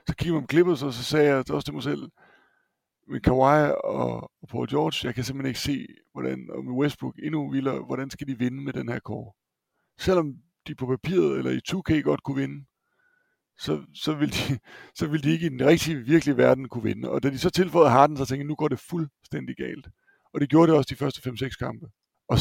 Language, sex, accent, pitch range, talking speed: Danish, male, native, 125-150 Hz, 230 wpm